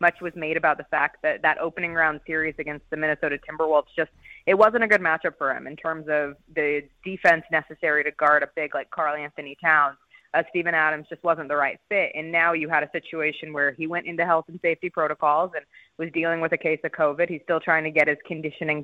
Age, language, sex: 20-39, English, female